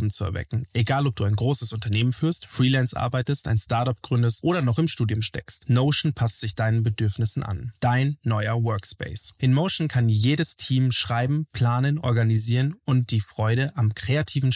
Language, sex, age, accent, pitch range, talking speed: German, male, 20-39, German, 110-140 Hz, 170 wpm